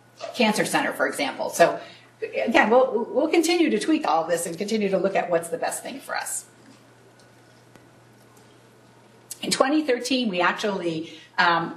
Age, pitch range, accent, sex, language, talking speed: 50-69, 170-220 Hz, American, female, English, 150 wpm